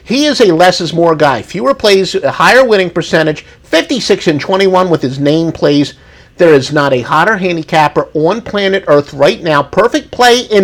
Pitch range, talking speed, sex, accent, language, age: 140-220 Hz, 180 wpm, male, American, English, 50-69